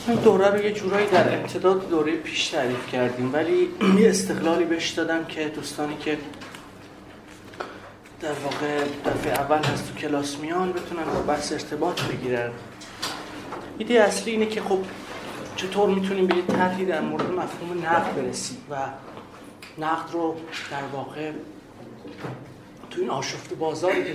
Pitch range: 140-185 Hz